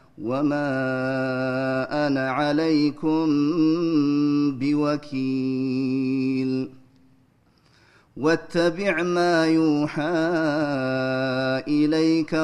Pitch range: 130-150 Hz